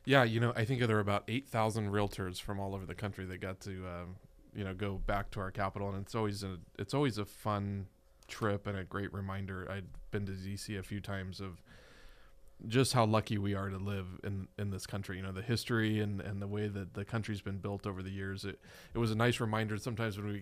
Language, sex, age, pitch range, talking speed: English, male, 20-39, 95-110 Hz, 245 wpm